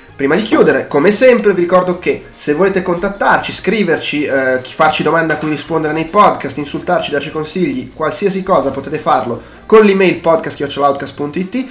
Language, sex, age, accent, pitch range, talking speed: Italian, male, 20-39, native, 145-205 Hz, 155 wpm